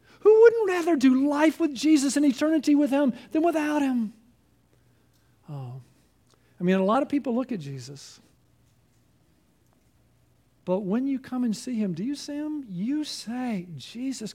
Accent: American